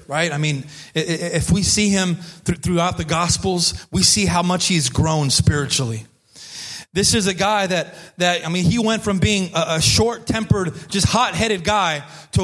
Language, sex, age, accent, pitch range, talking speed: English, male, 30-49, American, 145-190 Hz, 180 wpm